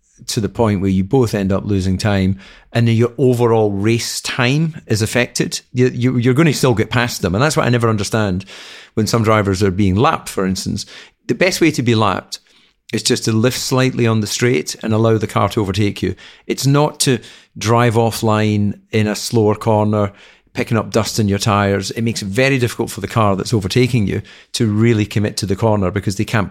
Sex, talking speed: male, 215 wpm